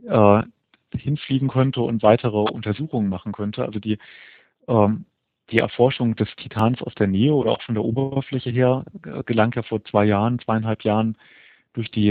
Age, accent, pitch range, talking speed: 40-59, German, 105-125 Hz, 160 wpm